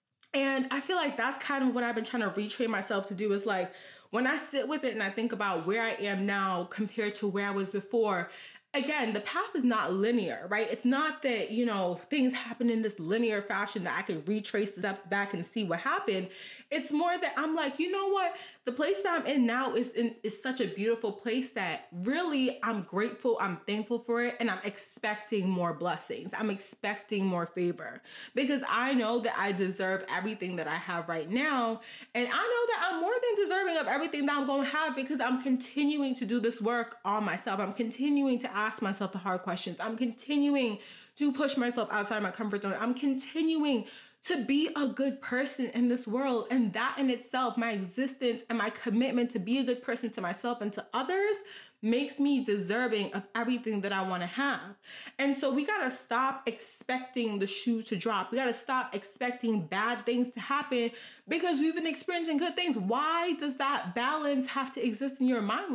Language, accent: English, American